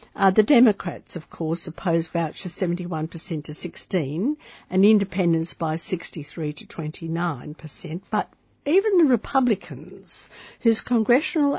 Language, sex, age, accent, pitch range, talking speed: English, female, 60-79, Australian, 155-210 Hz, 110 wpm